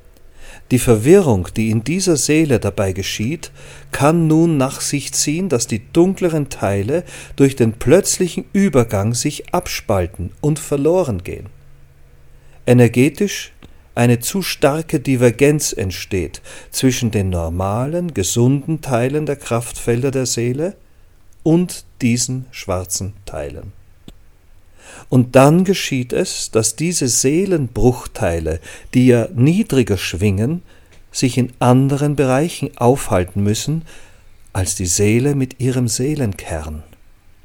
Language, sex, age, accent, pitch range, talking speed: German, male, 40-59, German, 95-140 Hz, 110 wpm